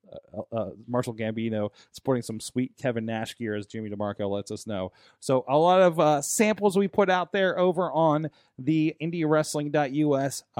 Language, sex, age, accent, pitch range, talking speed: English, male, 20-39, American, 115-155 Hz, 175 wpm